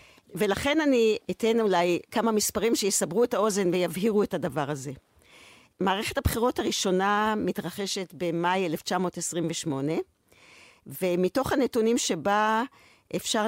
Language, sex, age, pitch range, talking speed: Hebrew, female, 50-69, 190-270 Hz, 100 wpm